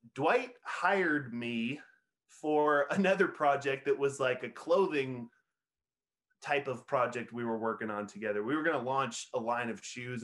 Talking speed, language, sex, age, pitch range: 165 wpm, English, male, 20-39, 125-165 Hz